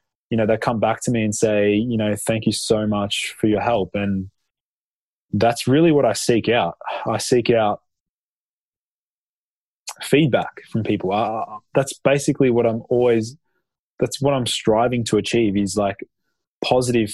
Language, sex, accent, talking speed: English, male, Australian, 160 wpm